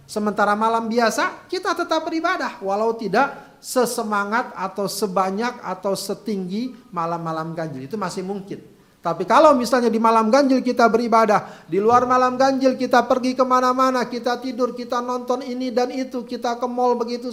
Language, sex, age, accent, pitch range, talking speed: Indonesian, male, 40-59, native, 185-255 Hz, 150 wpm